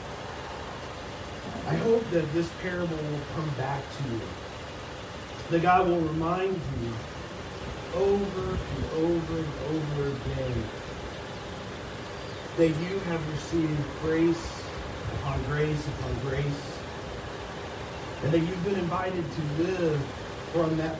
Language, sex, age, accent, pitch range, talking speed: English, male, 40-59, American, 115-165 Hz, 110 wpm